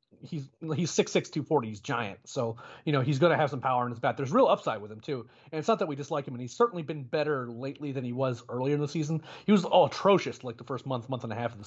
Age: 30-49